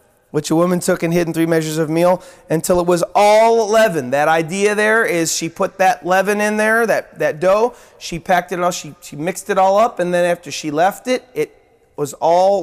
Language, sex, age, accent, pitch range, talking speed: English, male, 30-49, American, 175-230 Hz, 230 wpm